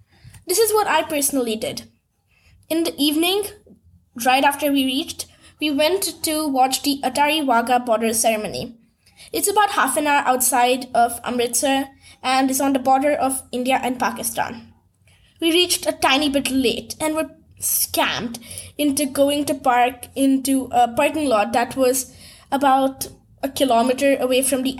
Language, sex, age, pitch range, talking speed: English, female, 20-39, 240-295 Hz, 155 wpm